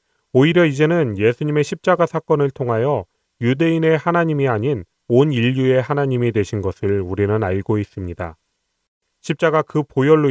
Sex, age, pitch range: male, 30-49, 105-140 Hz